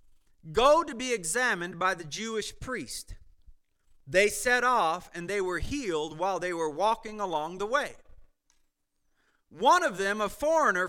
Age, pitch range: 40-59, 190-285 Hz